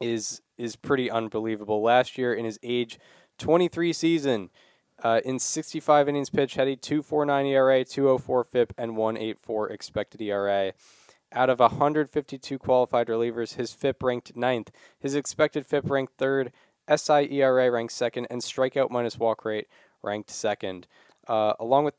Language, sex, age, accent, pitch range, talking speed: English, male, 10-29, American, 120-150 Hz, 145 wpm